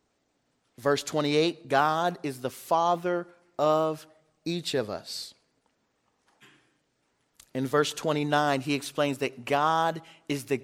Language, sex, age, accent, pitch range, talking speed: English, male, 40-59, American, 140-175 Hz, 105 wpm